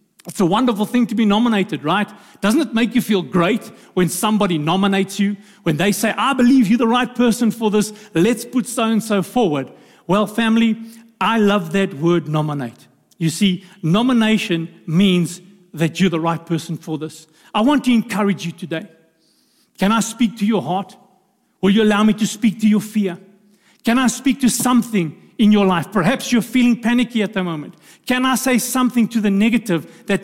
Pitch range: 180-225 Hz